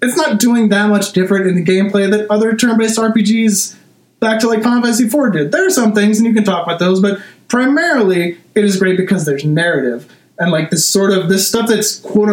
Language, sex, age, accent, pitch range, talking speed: English, male, 20-39, American, 170-215 Hz, 230 wpm